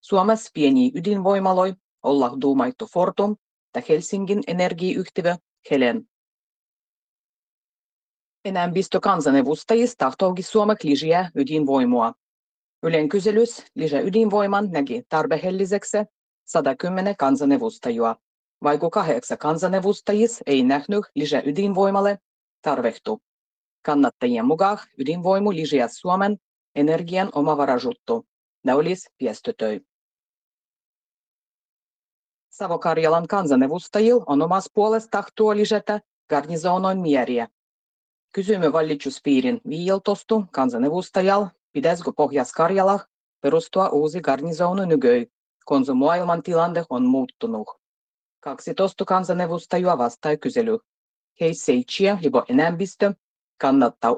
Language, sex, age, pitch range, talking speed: Finnish, female, 30-49, 150-205 Hz, 80 wpm